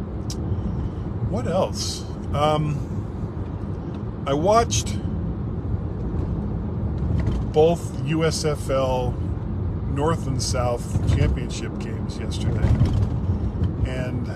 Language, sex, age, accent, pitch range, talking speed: English, male, 40-59, American, 100-120 Hz, 60 wpm